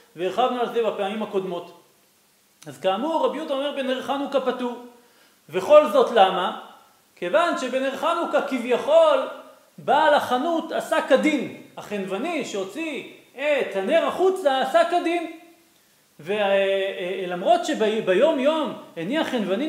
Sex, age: male, 40-59